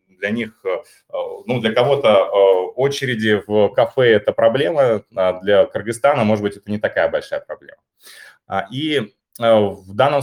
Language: Russian